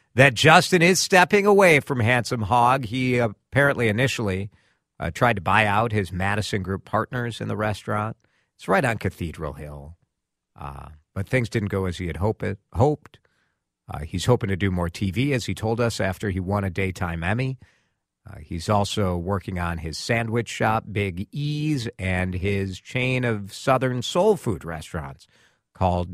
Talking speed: 170 wpm